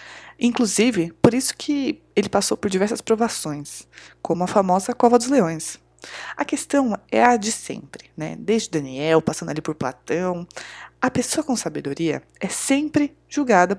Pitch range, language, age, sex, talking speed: 150-235 Hz, Portuguese, 20-39, female, 150 wpm